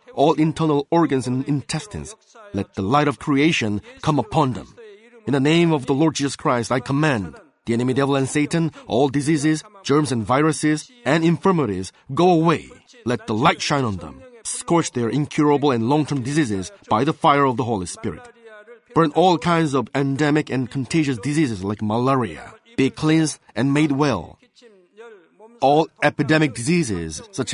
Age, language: 30-49, Korean